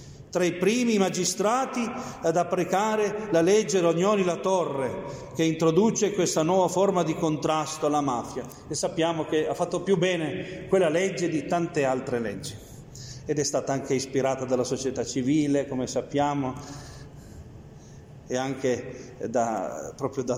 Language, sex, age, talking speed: Italian, male, 40-59, 135 wpm